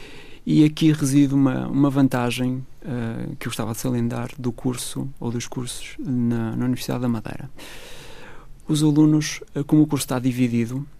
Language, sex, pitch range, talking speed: Portuguese, male, 120-135 Hz, 165 wpm